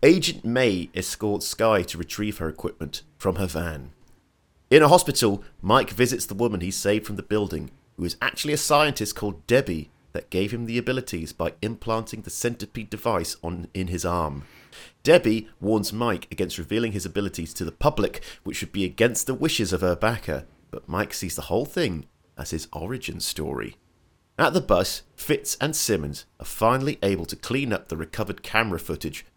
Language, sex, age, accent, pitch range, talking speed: English, male, 30-49, British, 85-115 Hz, 180 wpm